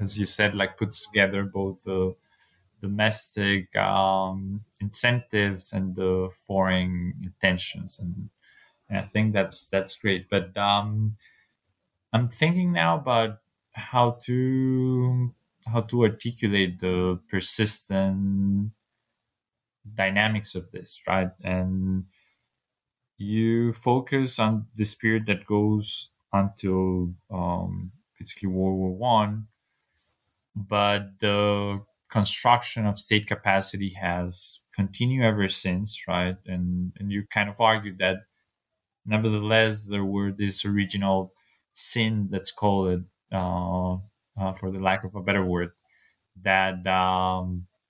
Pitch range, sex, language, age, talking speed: 95-110 Hz, male, English, 20-39, 115 wpm